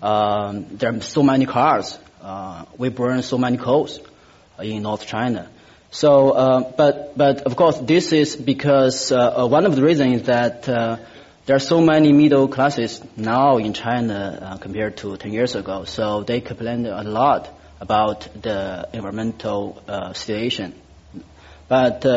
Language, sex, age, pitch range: English, male, 30-49, 110-135 Hz